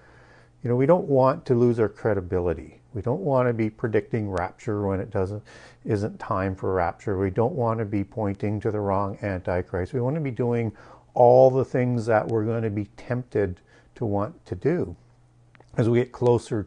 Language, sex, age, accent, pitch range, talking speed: English, male, 50-69, American, 100-125 Hz, 200 wpm